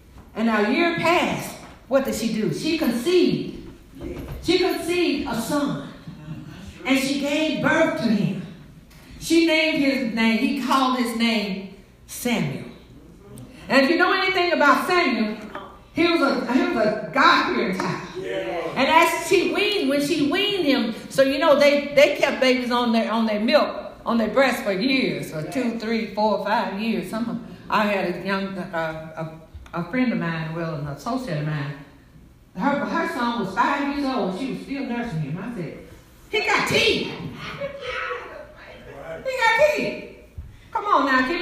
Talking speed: 170 wpm